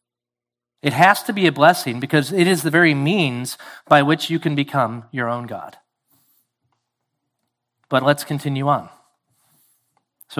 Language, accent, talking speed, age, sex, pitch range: English, American, 145 wpm, 40-59, male, 130-165 Hz